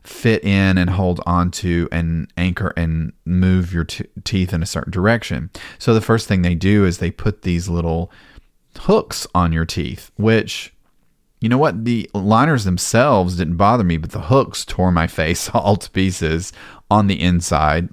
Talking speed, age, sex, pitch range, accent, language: 175 wpm, 30-49, male, 85-100 Hz, American, English